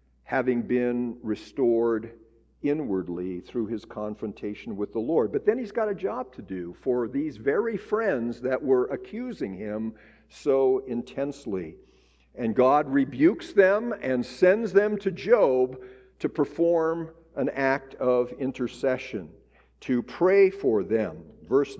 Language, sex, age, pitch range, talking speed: English, male, 50-69, 110-155 Hz, 130 wpm